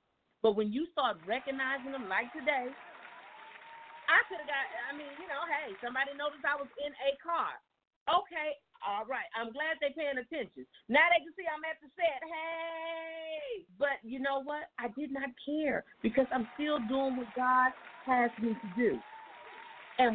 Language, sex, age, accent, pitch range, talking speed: English, female, 40-59, American, 215-290 Hz, 180 wpm